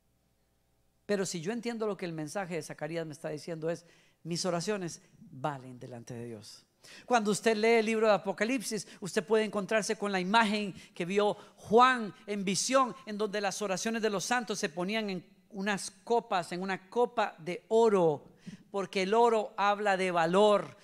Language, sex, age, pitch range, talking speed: Spanish, female, 50-69, 180-225 Hz, 175 wpm